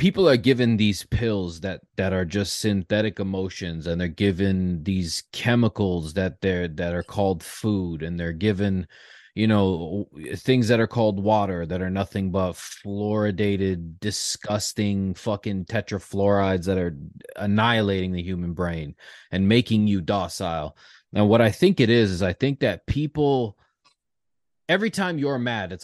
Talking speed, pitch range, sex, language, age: 155 wpm, 95-120 Hz, male, English, 30-49